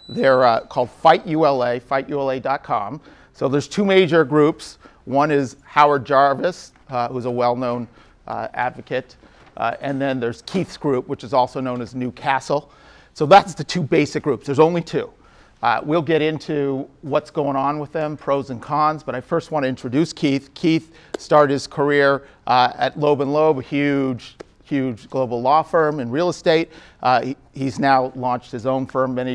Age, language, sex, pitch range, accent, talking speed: 40-59, English, male, 130-155 Hz, American, 180 wpm